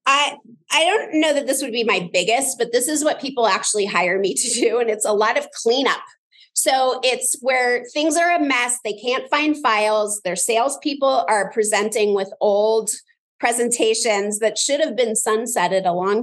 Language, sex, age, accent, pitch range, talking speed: English, female, 30-49, American, 205-270 Hz, 190 wpm